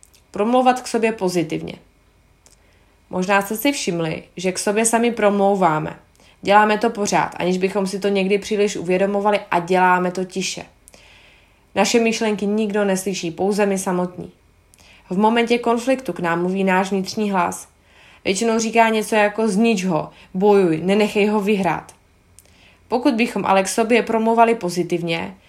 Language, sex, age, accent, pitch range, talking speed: Czech, female, 20-39, native, 175-215 Hz, 140 wpm